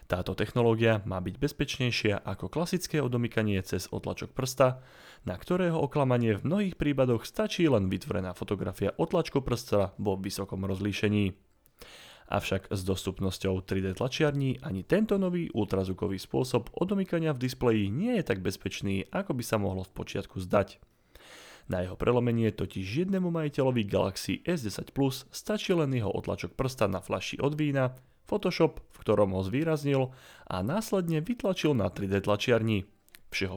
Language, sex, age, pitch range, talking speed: Slovak, male, 30-49, 95-145 Hz, 145 wpm